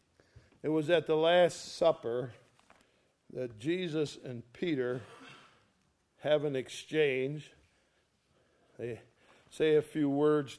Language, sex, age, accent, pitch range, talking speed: English, male, 50-69, American, 130-185 Hz, 100 wpm